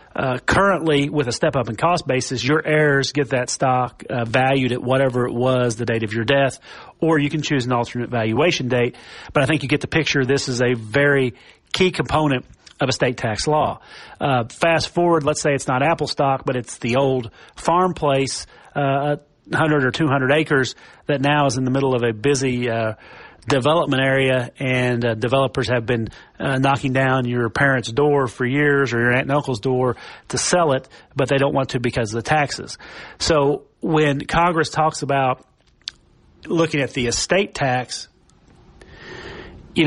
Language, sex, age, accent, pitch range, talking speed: English, male, 40-59, American, 125-150 Hz, 190 wpm